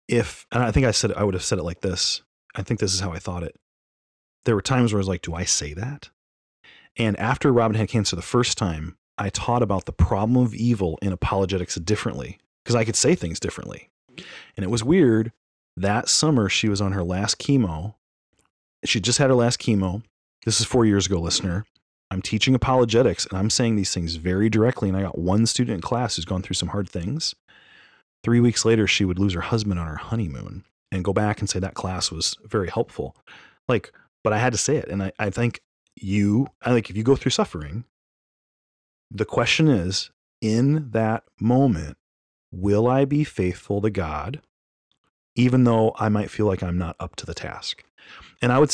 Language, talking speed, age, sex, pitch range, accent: English, 210 wpm, 30-49, male, 90-115 Hz, American